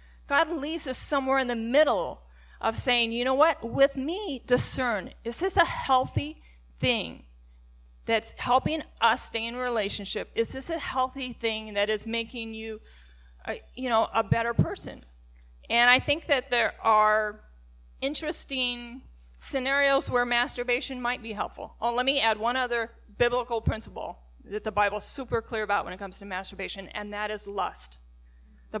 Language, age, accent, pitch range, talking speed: English, 30-49, American, 185-245 Hz, 165 wpm